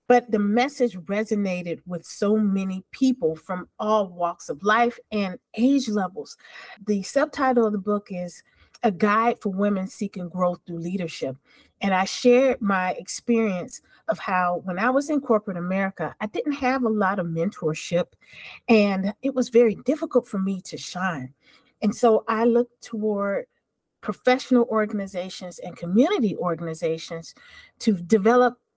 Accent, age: American, 40-59